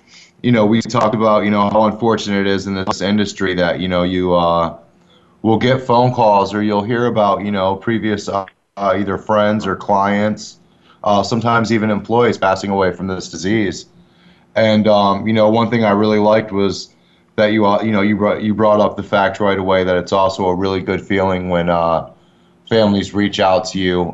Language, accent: English, American